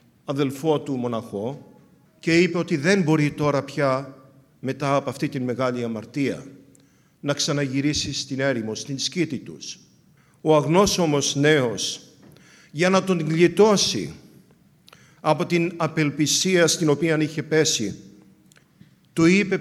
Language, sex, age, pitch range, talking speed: English, male, 50-69, 135-175 Hz, 120 wpm